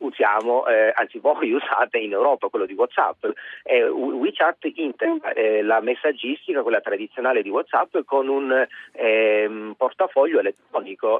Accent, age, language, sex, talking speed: native, 30-49, Italian, male, 135 wpm